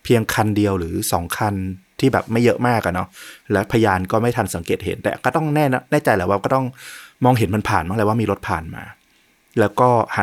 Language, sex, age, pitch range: Thai, male, 20-39, 105-130 Hz